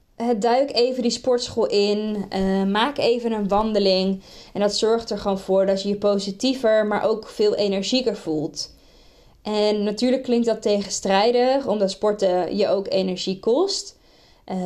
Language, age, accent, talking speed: Dutch, 20-39, Dutch, 155 wpm